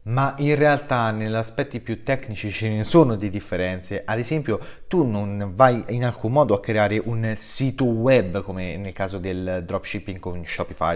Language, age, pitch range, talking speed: Italian, 20-39, 100-135 Hz, 175 wpm